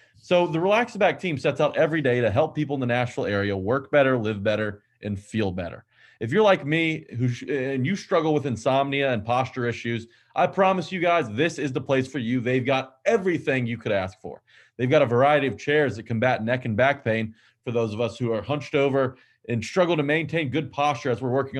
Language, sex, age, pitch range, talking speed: English, male, 30-49, 120-160 Hz, 230 wpm